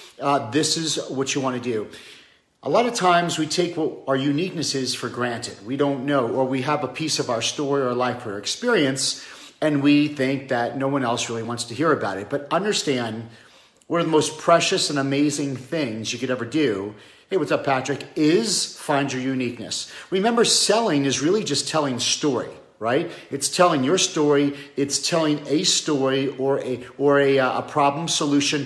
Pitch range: 130-155 Hz